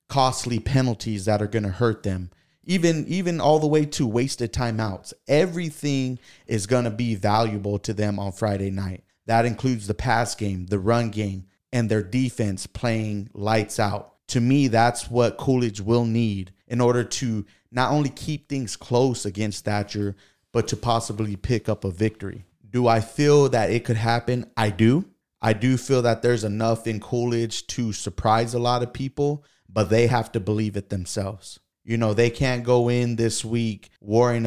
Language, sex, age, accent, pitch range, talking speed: English, male, 30-49, American, 105-120 Hz, 180 wpm